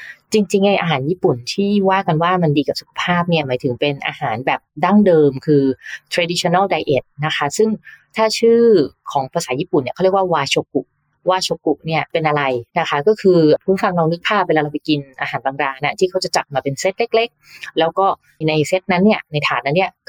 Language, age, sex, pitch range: English, 20-39, female, 145-190 Hz